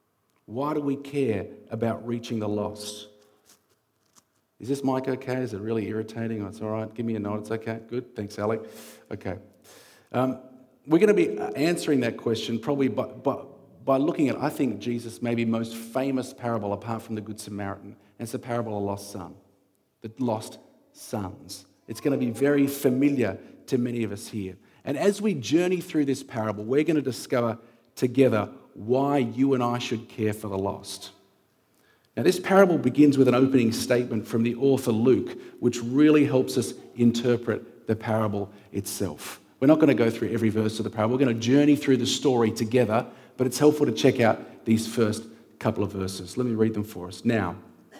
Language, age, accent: English, 40-59, Australian